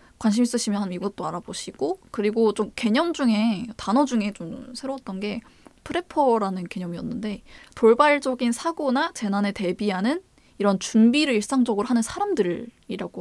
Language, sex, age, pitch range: Korean, female, 20-39, 195-250 Hz